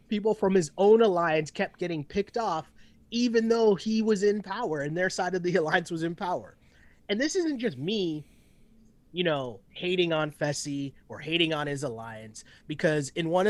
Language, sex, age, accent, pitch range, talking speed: English, male, 30-49, American, 155-200 Hz, 185 wpm